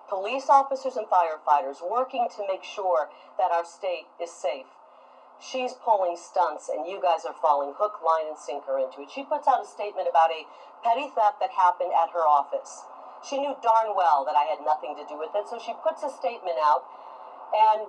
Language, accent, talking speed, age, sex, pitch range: English, American, 200 wpm, 40-59, female, 175-255 Hz